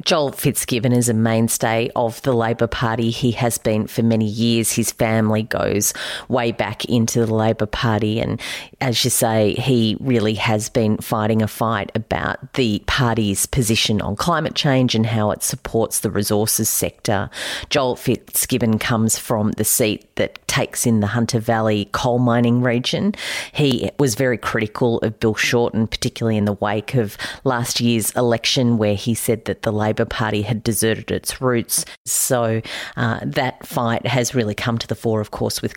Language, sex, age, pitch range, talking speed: English, female, 40-59, 110-120 Hz, 175 wpm